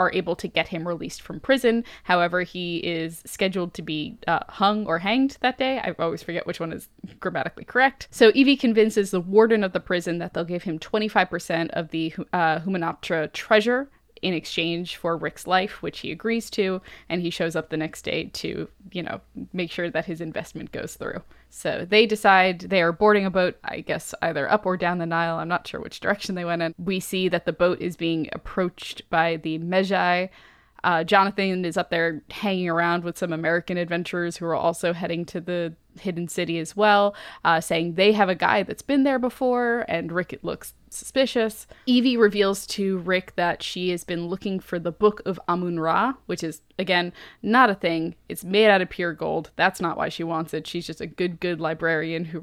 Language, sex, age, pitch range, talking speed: English, female, 10-29, 165-200 Hz, 205 wpm